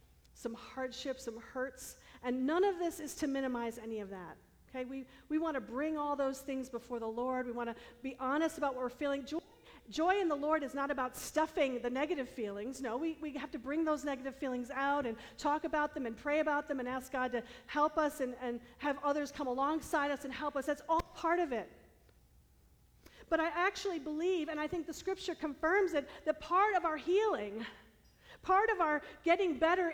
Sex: female